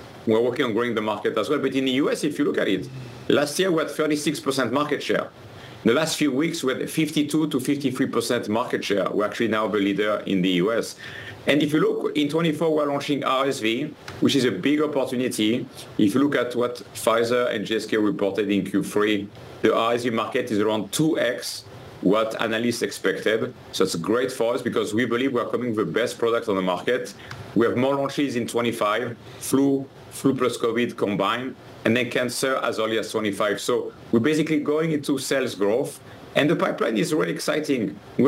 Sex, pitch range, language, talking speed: male, 115-150 Hz, English, 205 wpm